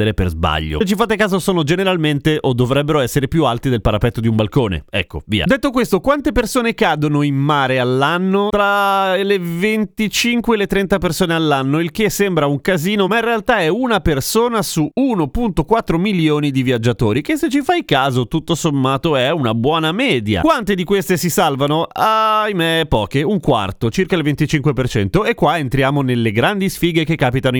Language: Italian